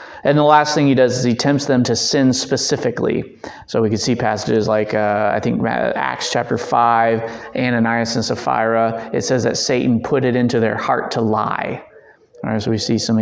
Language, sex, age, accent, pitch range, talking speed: English, male, 20-39, American, 120-150 Hz, 205 wpm